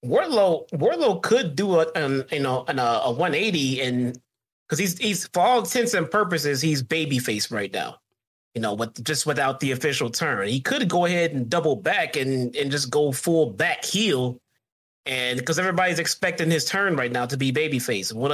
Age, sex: 30-49, male